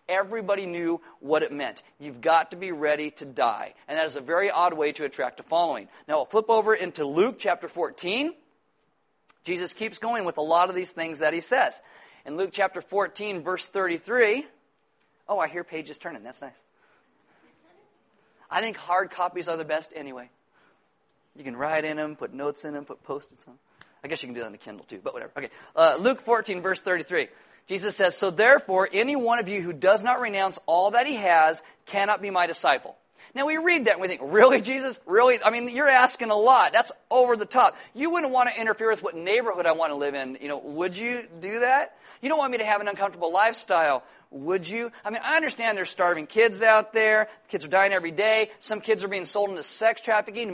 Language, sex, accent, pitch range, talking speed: English, male, American, 175-235 Hz, 220 wpm